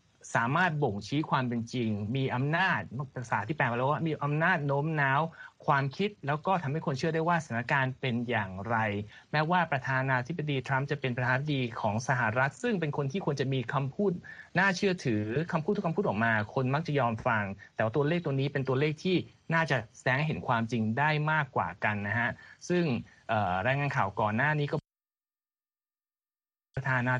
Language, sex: Thai, male